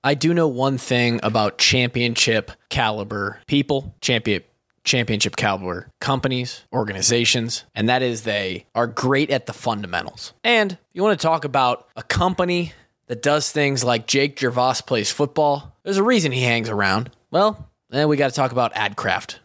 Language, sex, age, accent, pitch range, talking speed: English, male, 20-39, American, 120-150 Hz, 155 wpm